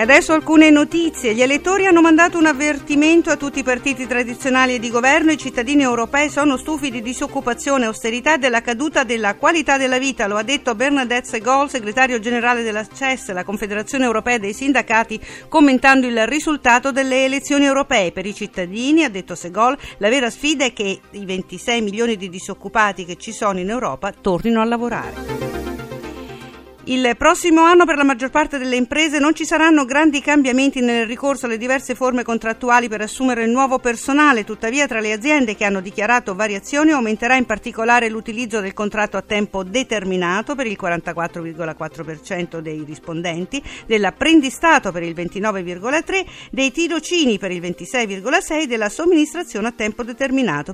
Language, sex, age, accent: Italian, female, 50-69, native